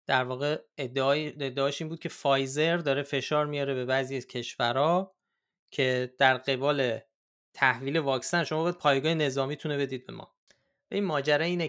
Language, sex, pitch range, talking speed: Persian, male, 120-150 Hz, 165 wpm